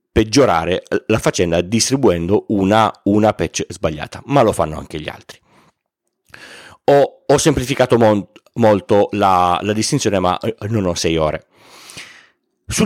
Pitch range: 100-150 Hz